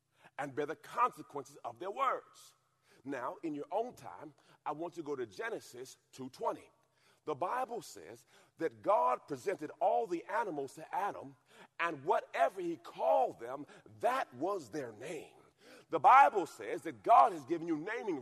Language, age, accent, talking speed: English, 40-59, American, 160 wpm